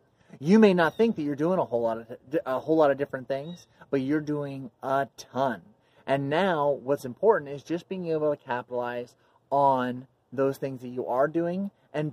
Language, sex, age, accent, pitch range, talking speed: English, male, 30-49, American, 130-155 Hz, 200 wpm